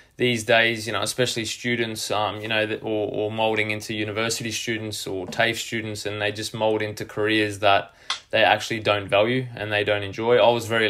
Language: English